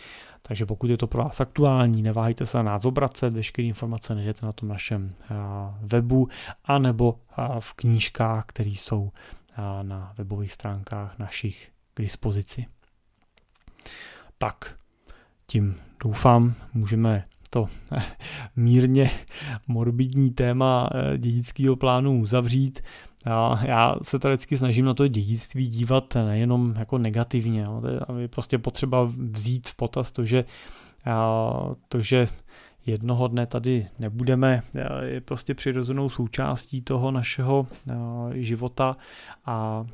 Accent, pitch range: native, 110-125 Hz